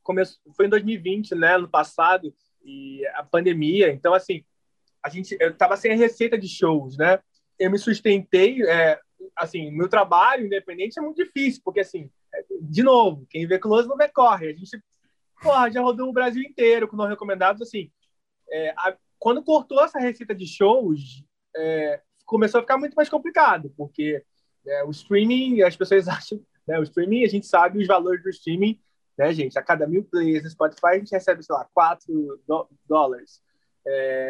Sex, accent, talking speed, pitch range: male, Brazilian, 180 wpm, 165-220 Hz